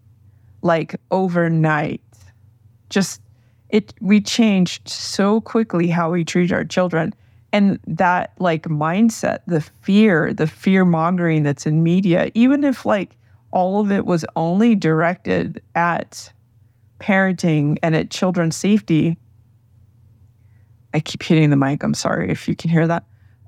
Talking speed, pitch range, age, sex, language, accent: 135 wpm, 115-180 Hz, 30-49, female, English, American